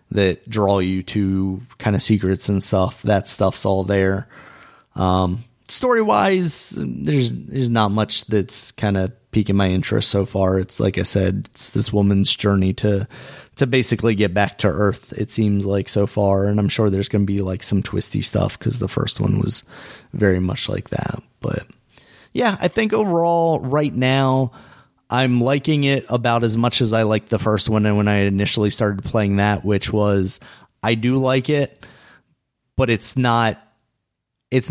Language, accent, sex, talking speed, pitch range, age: English, American, male, 180 wpm, 95-125 Hz, 30-49